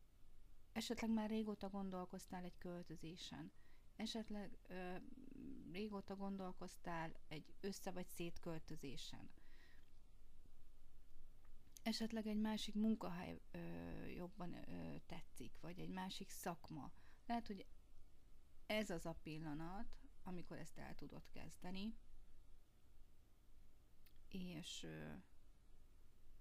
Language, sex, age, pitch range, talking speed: Hungarian, female, 30-49, 160-205 Hz, 80 wpm